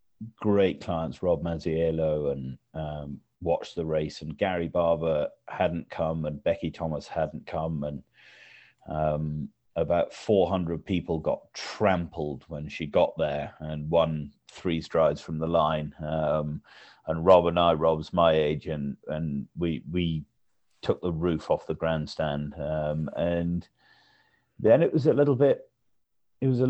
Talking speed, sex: 150 wpm, male